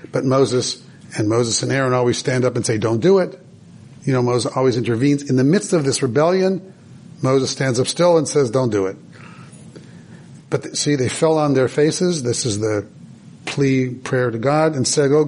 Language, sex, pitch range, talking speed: English, male, 130-165 Hz, 200 wpm